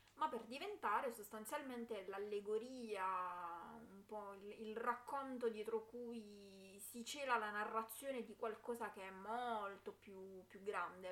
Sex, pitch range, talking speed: female, 195-235 Hz, 130 wpm